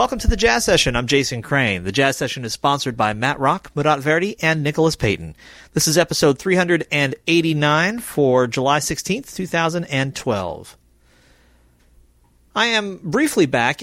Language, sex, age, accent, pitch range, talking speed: English, male, 40-59, American, 115-150 Hz, 145 wpm